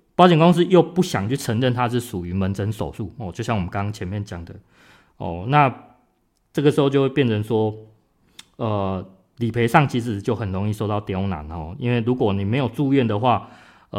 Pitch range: 95-125 Hz